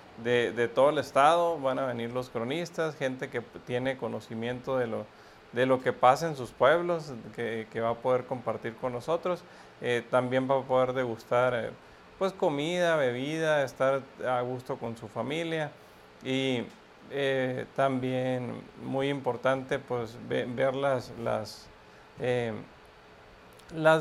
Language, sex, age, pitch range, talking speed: English, male, 40-59, 120-140 Hz, 150 wpm